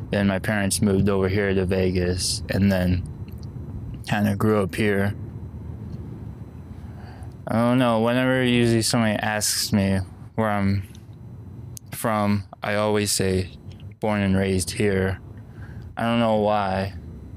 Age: 20-39